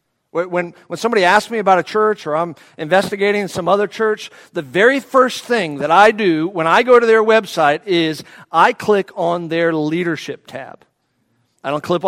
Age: 50-69